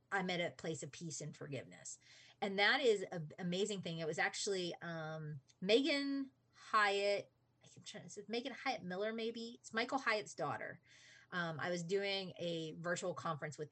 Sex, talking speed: female, 180 wpm